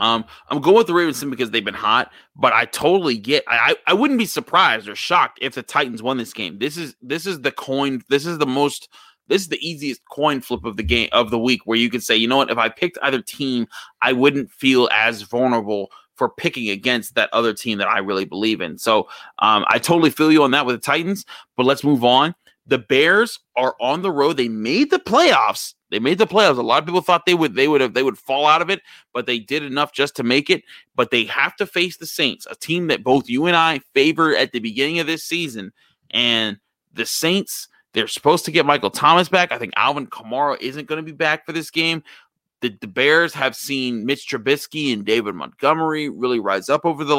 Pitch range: 120-165 Hz